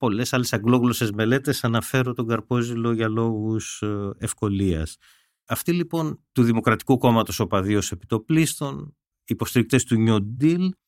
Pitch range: 110-140 Hz